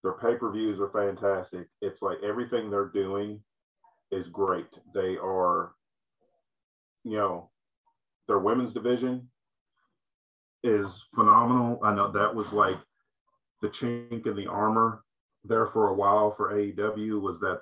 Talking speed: 130 wpm